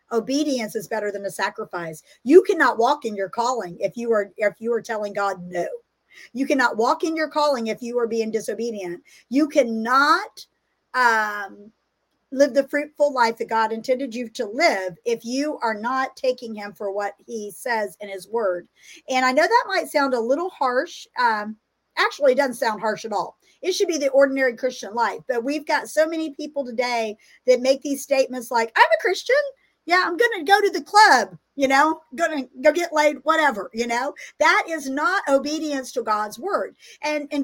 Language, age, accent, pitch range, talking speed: English, 50-69, American, 225-310 Hz, 195 wpm